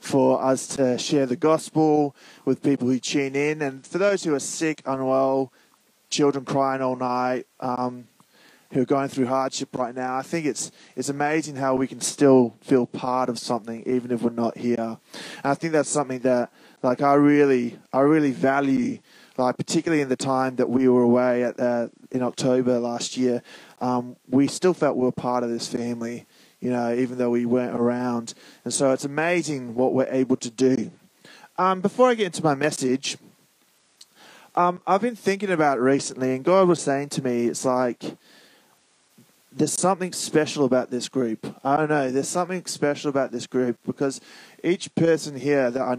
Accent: Australian